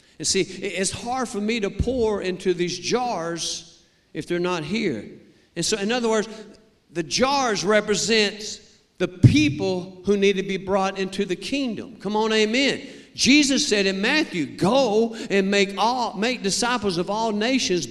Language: English